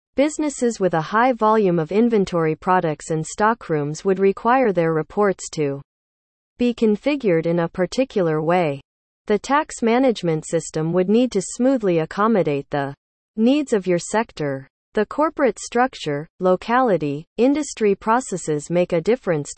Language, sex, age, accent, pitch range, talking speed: English, female, 40-59, American, 160-225 Hz, 135 wpm